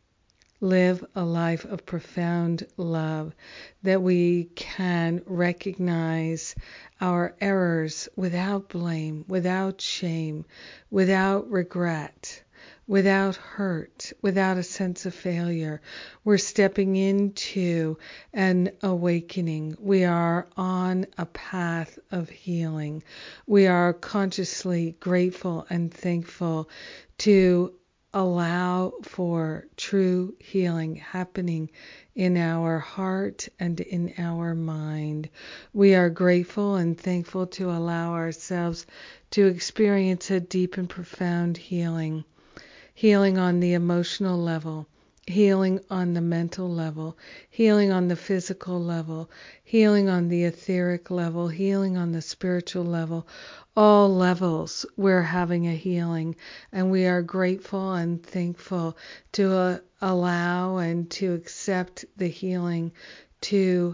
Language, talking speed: English, 110 wpm